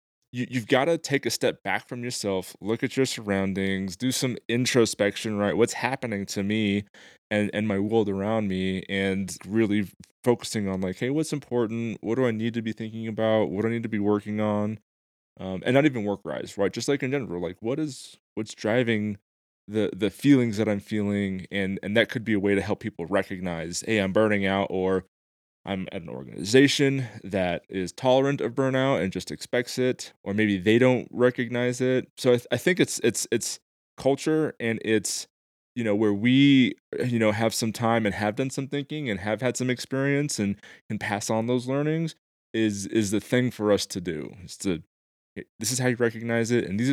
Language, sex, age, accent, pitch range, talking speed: English, male, 20-39, American, 100-125 Hz, 205 wpm